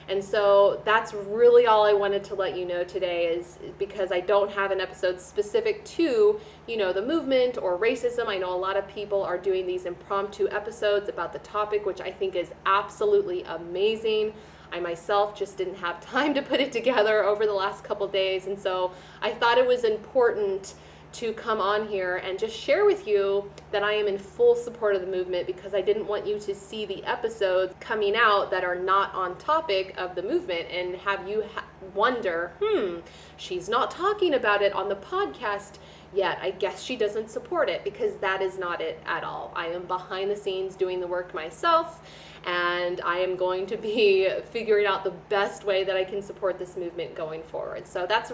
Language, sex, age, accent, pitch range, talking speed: English, female, 30-49, American, 185-225 Hz, 205 wpm